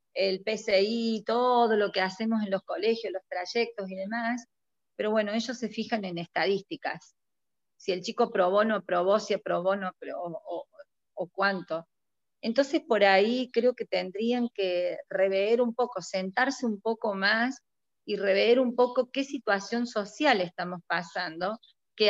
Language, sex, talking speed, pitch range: Spanish, female, 160 wpm, 185-240 Hz